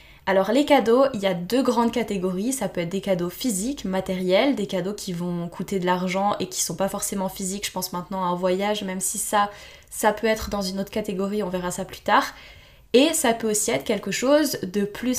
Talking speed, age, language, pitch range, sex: 235 wpm, 10-29, French, 195-240 Hz, female